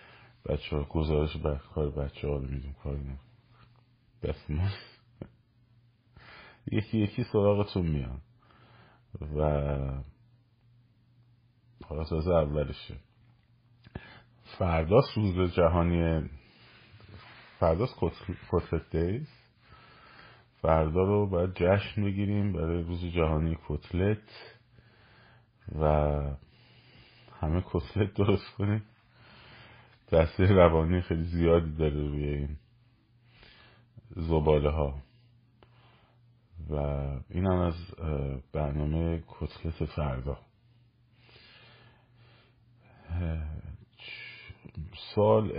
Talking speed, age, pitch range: 75 wpm, 30-49, 80-120 Hz